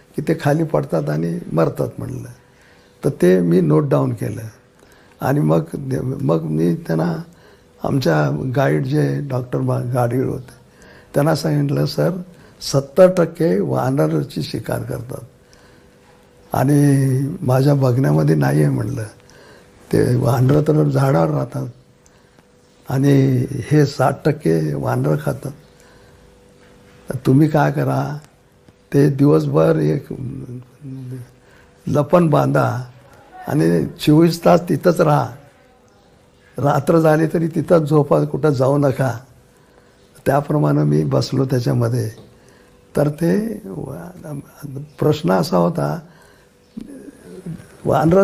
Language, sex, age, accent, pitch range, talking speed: Marathi, male, 60-79, native, 125-155 Hz, 100 wpm